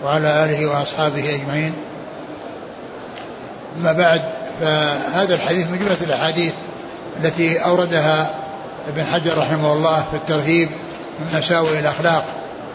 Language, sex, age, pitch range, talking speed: Arabic, male, 60-79, 160-180 Hz, 105 wpm